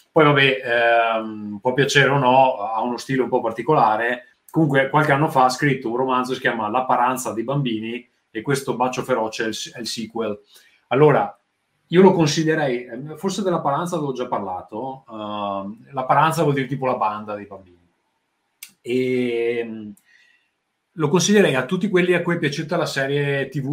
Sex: male